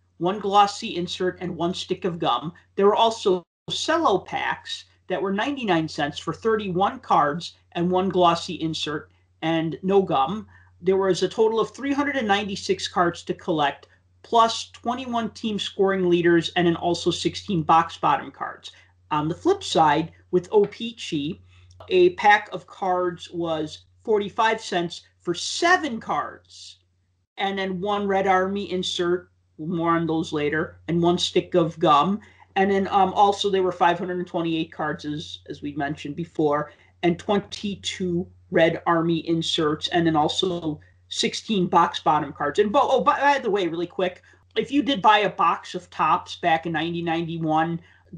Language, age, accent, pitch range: English, 40-59, American, 160-200 Hz